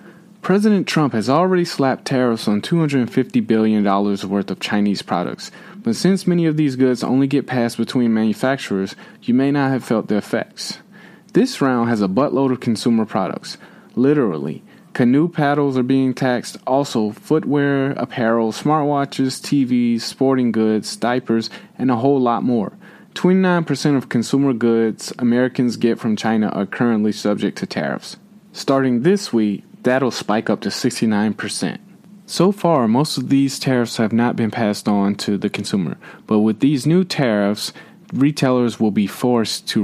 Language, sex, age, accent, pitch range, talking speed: English, male, 20-39, American, 110-150 Hz, 155 wpm